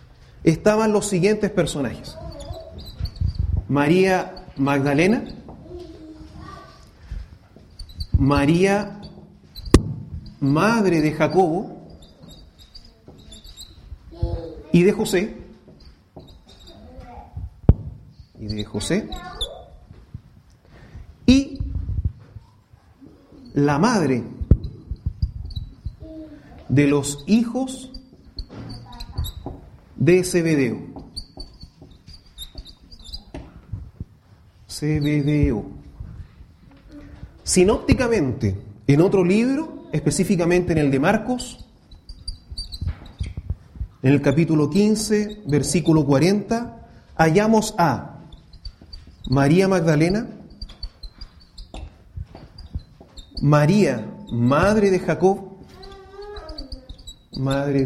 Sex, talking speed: male, 50 wpm